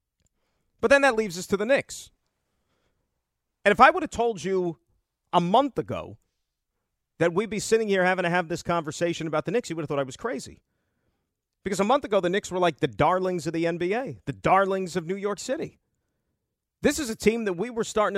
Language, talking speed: English, 215 wpm